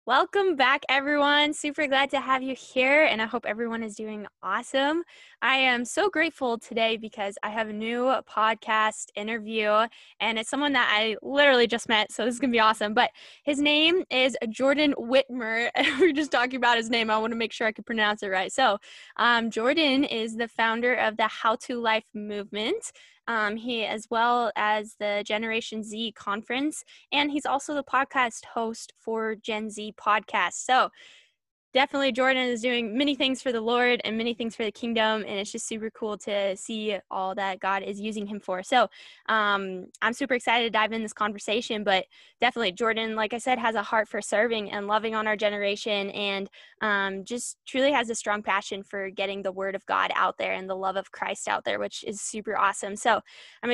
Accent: American